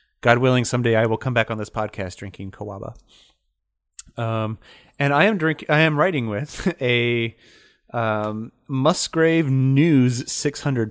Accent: American